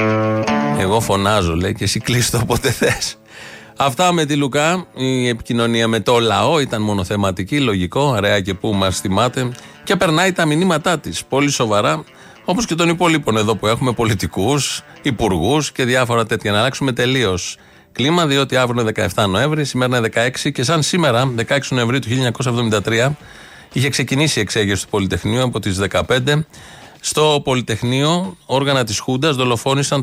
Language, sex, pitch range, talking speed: Greek, male, 110-140 Hz, 150 wpm